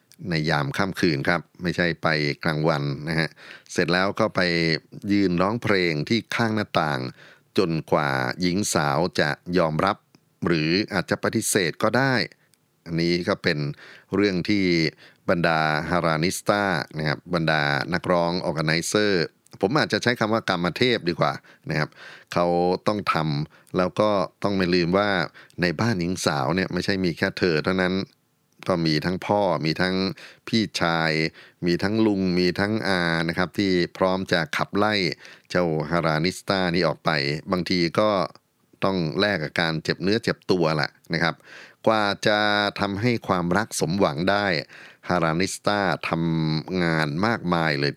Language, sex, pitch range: Thai, male, 80-100 Hz